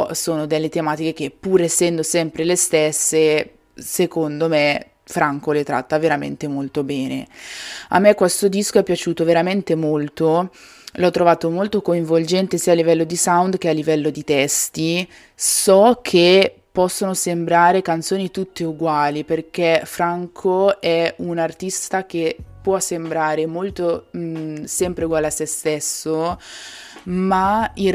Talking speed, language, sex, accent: 135 wpm, Italian, female, native